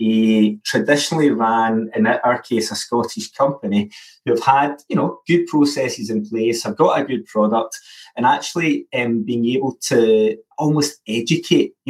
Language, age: English, 30-49